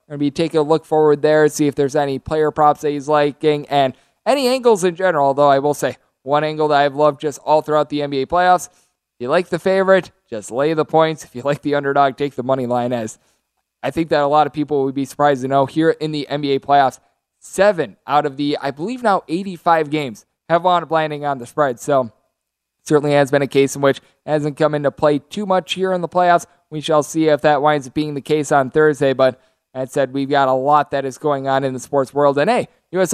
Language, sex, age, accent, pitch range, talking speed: English, male, 20-39, American, 145-170 Hz, 250 wpm